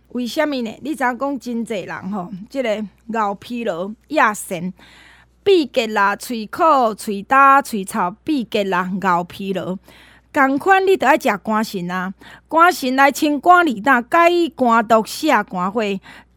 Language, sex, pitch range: Chinese, female, 205-285 Hz